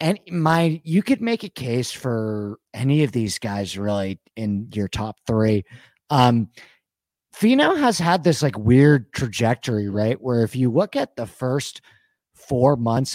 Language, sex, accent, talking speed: English, male, American, 160 wpm